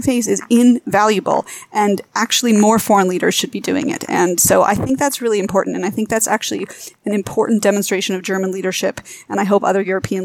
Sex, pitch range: female, 190-220 Hz